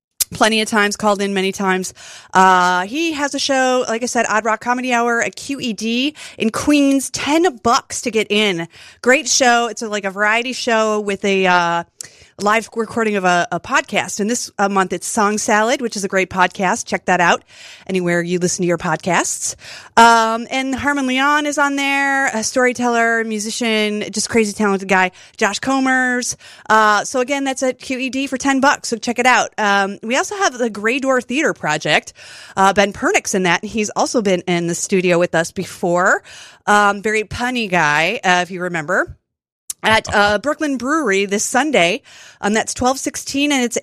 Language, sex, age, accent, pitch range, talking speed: English, female, 30-49, American, 195-270 Hz, 190 wpm